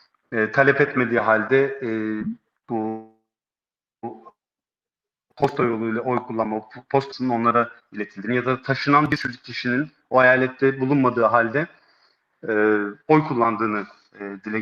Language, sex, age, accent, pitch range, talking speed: Turkish, male, 40-59, native, 115-145 Hz, 120 wpm